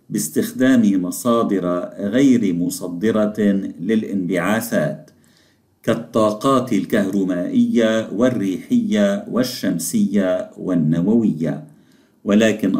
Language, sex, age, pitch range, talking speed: Arabic, male, 50-69, 105-150 Hz, 50 wpm